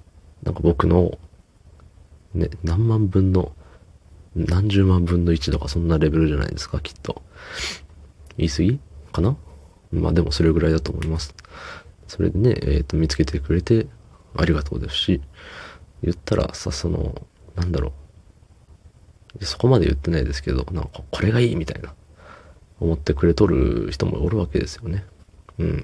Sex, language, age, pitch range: male, Japanese, 30-49, 75-95 Hz